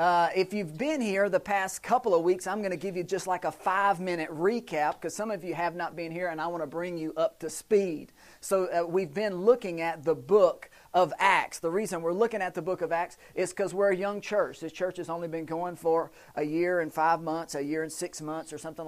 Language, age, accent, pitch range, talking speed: English, 40-59, American, 165-200 Hz, 255 wpm